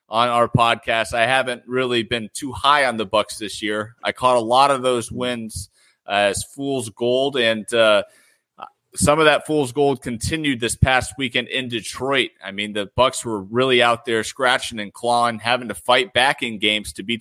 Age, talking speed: 30-49, 195 wpm